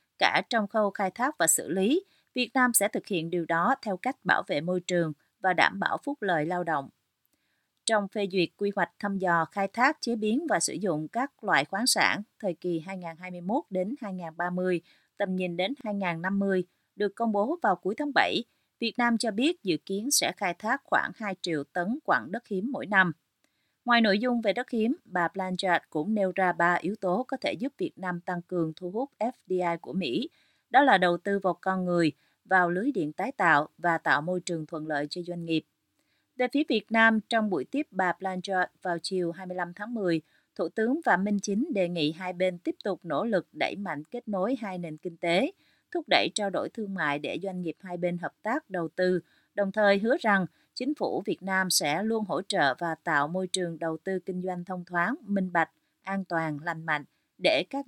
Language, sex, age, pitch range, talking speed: Vietnamese, female, 30-49, 175-225 Hz, 215 wpm